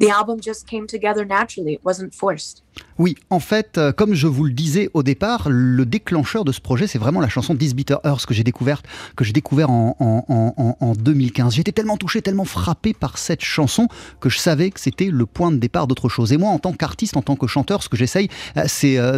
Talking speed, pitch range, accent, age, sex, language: 210 wpm, 125-185 Hz, French, 30-49, male, French